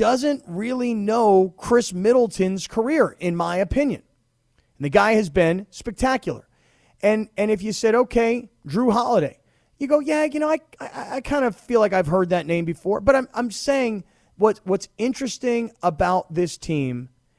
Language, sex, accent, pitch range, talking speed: English, male, American, 160-215 Hz, 175 wpm